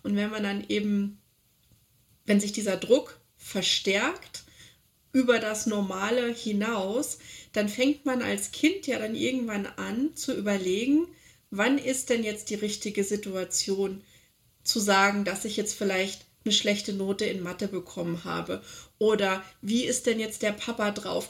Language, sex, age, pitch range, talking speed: German, female, 30-49, 200-235 Hz, 150 wpm